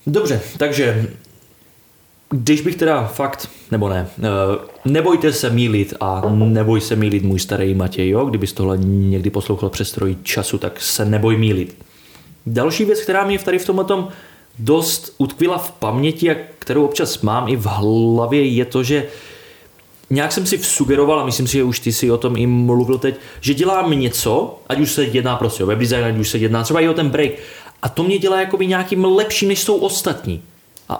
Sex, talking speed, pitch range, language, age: male, 190 wpm, 115-160 Hz, Czech, 20-39